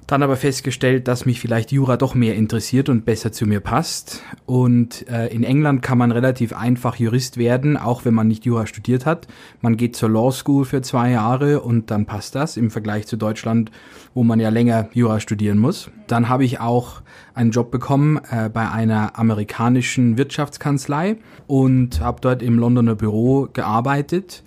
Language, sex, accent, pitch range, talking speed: German, male, German, 115-130 Hz, 180 wpm